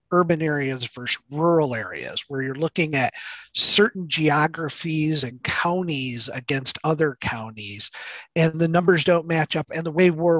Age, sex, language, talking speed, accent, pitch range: 40-59, male, English, 150 wpm, American, 130-170 Hz